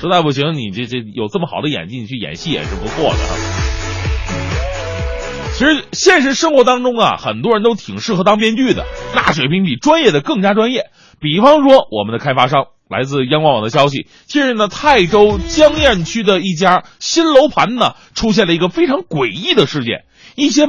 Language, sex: Chinese, male